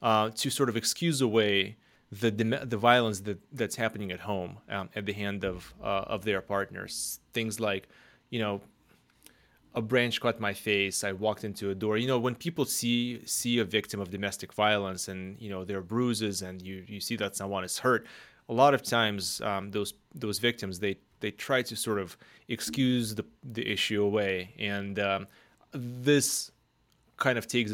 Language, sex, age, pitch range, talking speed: English, male, 20-39, 100-115 Hz, 190 wpm